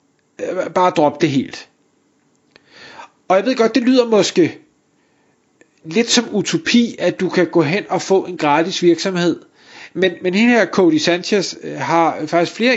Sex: male